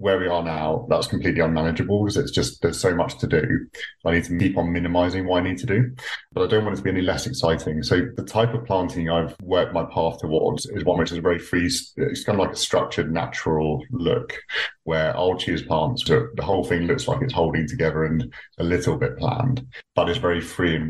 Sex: male